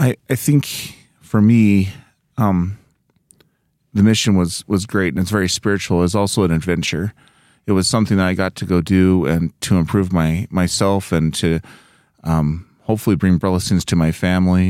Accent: American